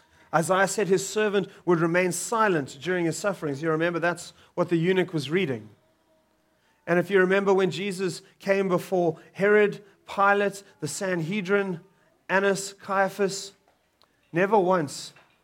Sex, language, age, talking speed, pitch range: male, English, 30-49, 130 wpm, 150-195 Hz